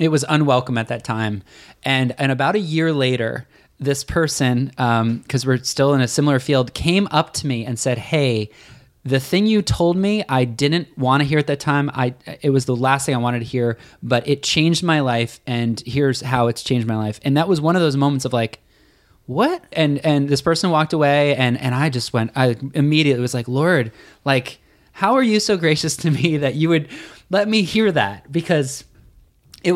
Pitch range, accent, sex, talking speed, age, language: 125-155 Hz, American, male, 215 wpm, 20-39, English